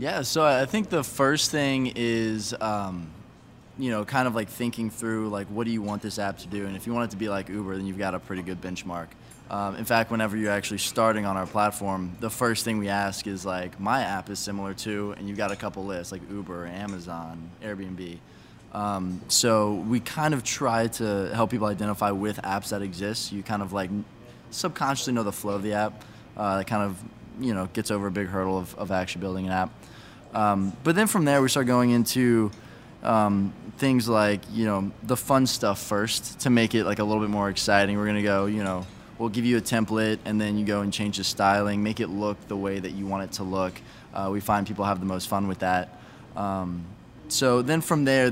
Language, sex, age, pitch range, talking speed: English, male, 20-39, 100-115 Hz, 230 wpm